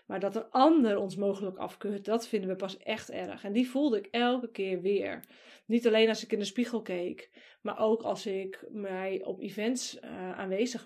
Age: 20-39